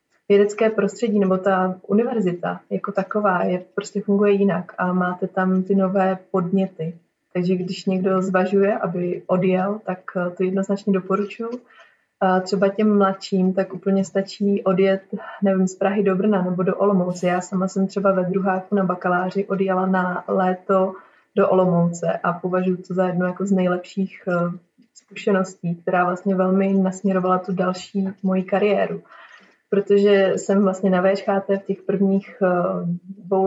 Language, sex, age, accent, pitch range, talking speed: Czech, female, 20-39, native, 185-195 Hz, 140 wpm